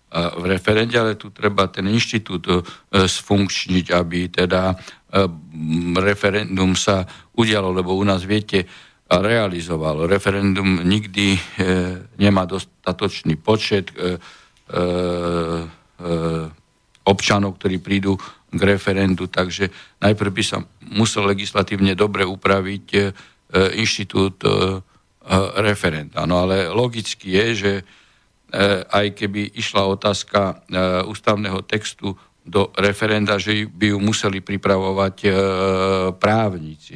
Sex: male